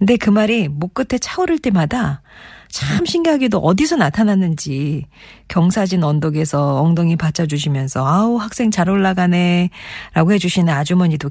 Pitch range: 150-195 Hz